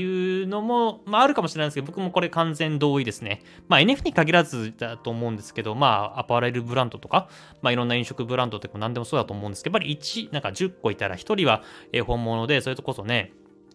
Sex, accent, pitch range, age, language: male, native, 115-165 Hz, 20-39, Japanese